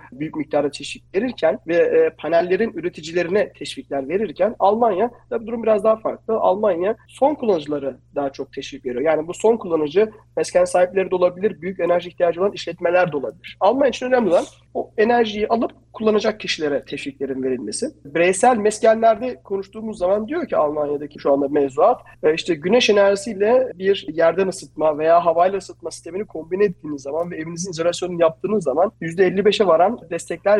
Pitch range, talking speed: 165-220 Hz, 155 wpm